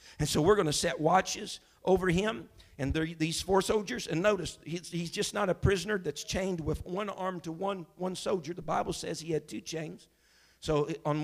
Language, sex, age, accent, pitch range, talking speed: English, male, 50-69, American, 170-225 Hz, 215 wpm